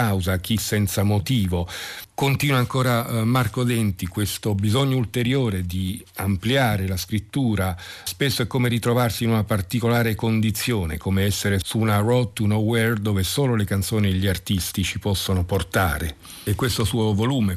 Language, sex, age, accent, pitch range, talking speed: Italian, male, 50-69, native, 95-115 Hz, 145 wpm